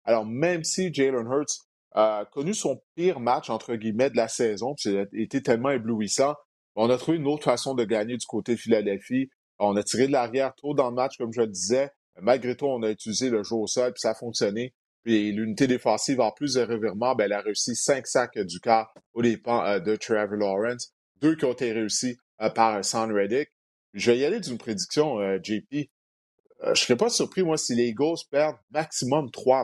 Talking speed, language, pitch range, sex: 220 wpm, French, 110-135 Hz, male